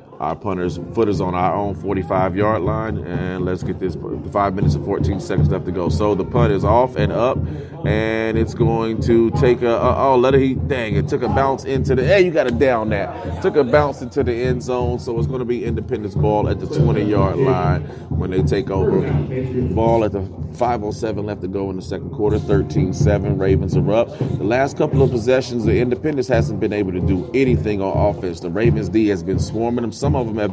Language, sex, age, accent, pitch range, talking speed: English, male, 30-49, American, 95-120 Hz, 230 wpm